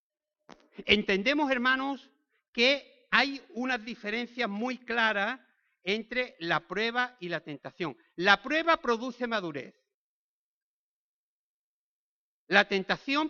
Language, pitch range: Spanish, 180-270 Hz